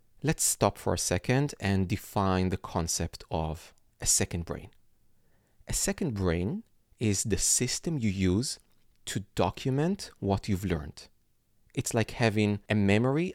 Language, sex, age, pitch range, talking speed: English, male, 40-59, 95-110 Hz, 140 wpm